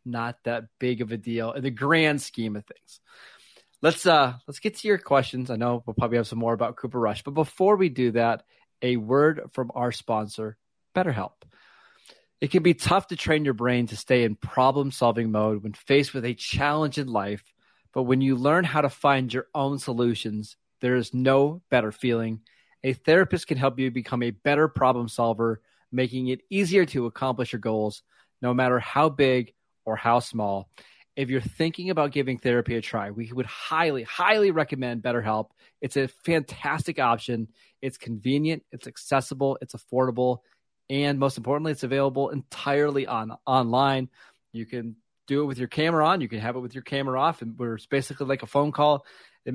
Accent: American